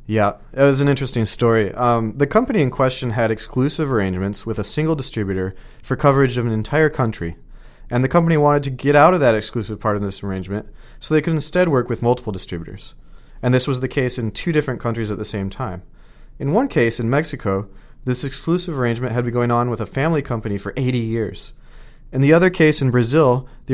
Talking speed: 215 wpm